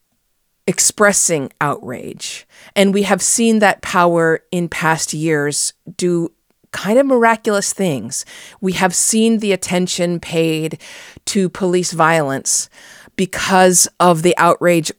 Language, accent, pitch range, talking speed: English, American, 150-185 Hz, 115 wpm